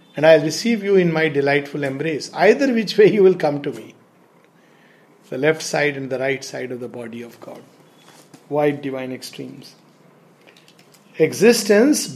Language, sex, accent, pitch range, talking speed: English, male, Indian, 145-185 Hz, 165 wpm